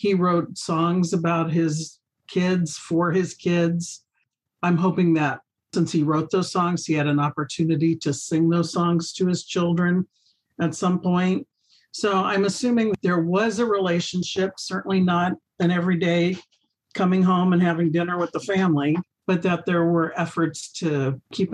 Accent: American